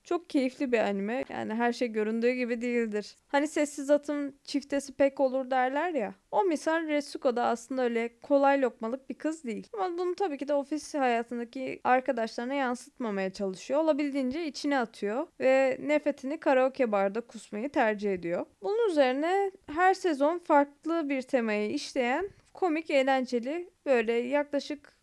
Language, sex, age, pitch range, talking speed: Turkish, female, 20-39, 250-320 Hz, 145 wpm